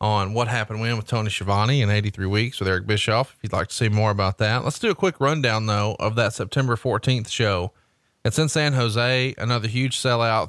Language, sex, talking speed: English, male, 225 wpm